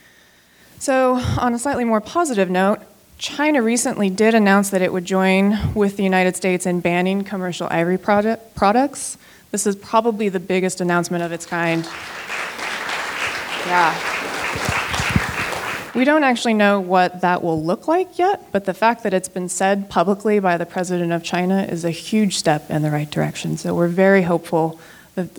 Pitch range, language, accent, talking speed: 170-205 Hz, English, American, 165 wpm